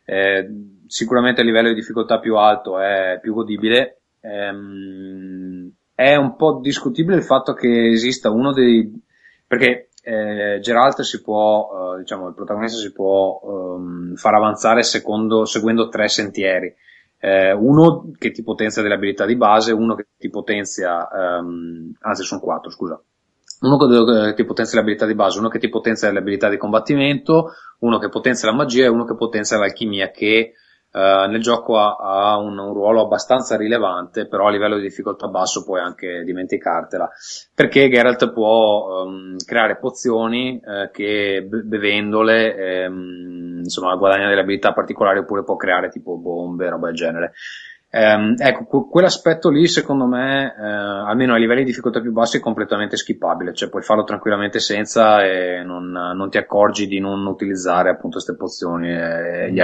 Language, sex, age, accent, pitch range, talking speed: Italian, male, 20-39, native, 95-115 Hz, 165 wpm